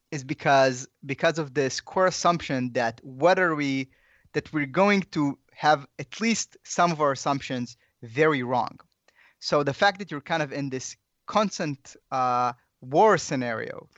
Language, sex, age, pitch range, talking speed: English, male, 20-39, 130-165 Hz, 160 wpm